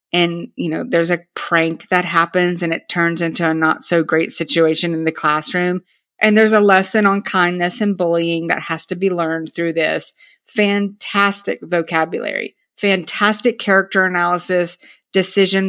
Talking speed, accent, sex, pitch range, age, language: 155 wpm, American, female, 165-195 Hz, 30-49, English